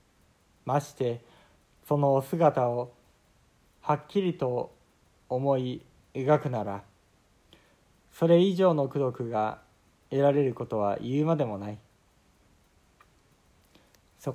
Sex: male